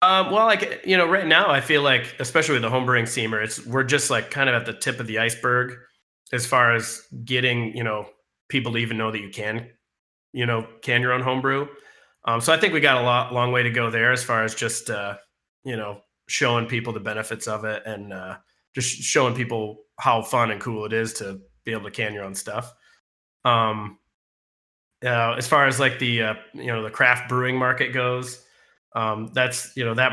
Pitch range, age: 110-125 Hz, 30-49